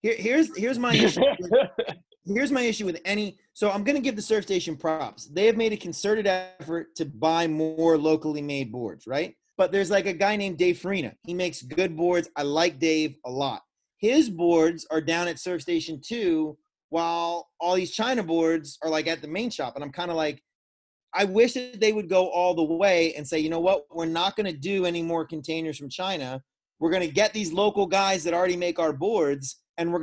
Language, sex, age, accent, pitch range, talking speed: English, male, 30-49, American, 160-200 Hz, 215 wpm